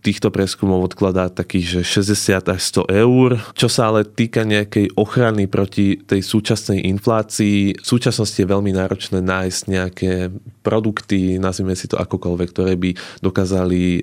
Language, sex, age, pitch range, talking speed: Slovak, male, 20-39, 90-100 Hz, 145 wpm